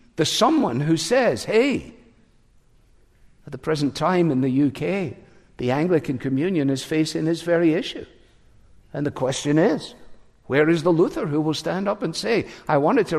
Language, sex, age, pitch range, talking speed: English, male, 60-79, 160-200 Hz, 170 wpm